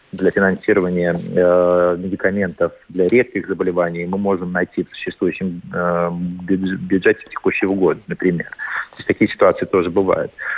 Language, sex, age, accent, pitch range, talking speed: Russian, male, 30-49, native, 90-110 Hz, 120 wpm